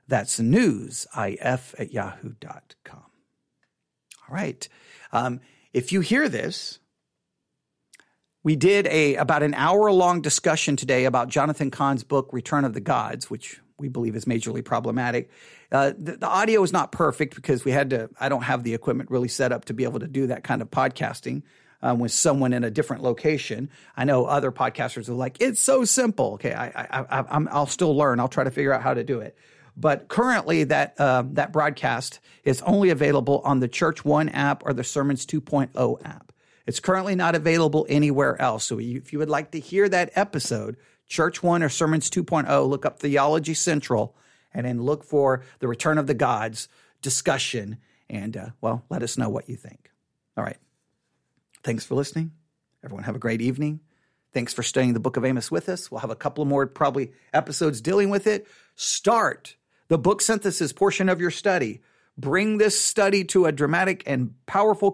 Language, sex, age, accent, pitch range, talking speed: English, male, 40-59, American, 125-165 Hz, 190 wpm